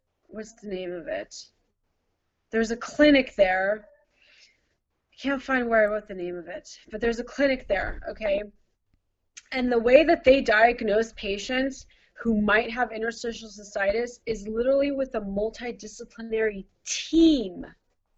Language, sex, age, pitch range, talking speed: English, female, 30-49, 215-285 Hz, 140 wpm